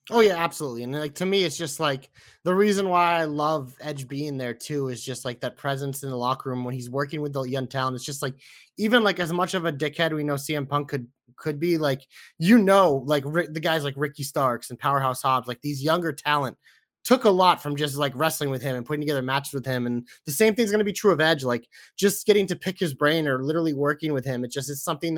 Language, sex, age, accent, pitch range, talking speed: English, male, 20-39, American, 135-195 Hz, 260 wpm